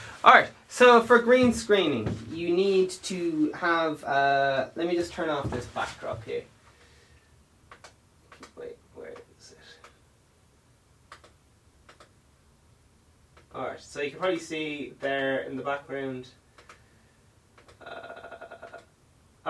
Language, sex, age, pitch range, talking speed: English, male, 20-39, 120-185 Hz, 110 wpm